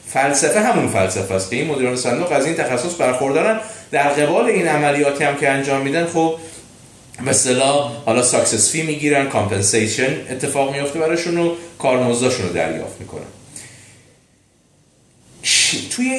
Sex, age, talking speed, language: male, 30-49, 130 wpm, Persian